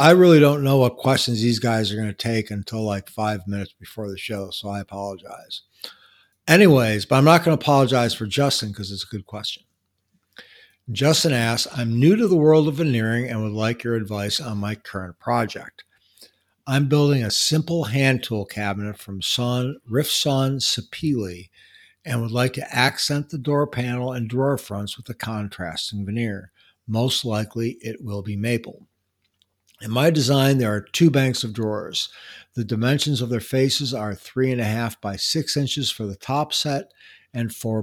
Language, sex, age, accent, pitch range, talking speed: English, male, 60-79, American, 105-135 Hz, 180 wpm